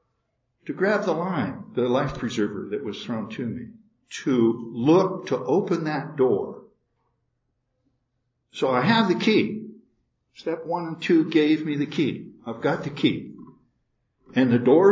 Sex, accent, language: male, American, English